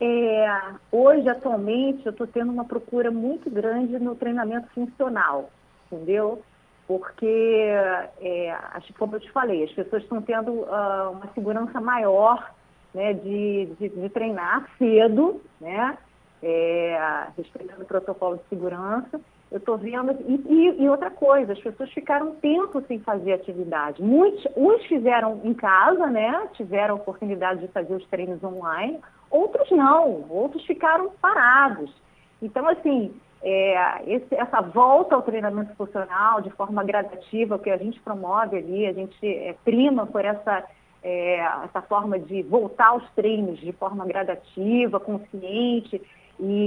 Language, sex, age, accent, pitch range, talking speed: Portuguese, female, 40-59, Brazilian, 195-250 Hz, 140 wpm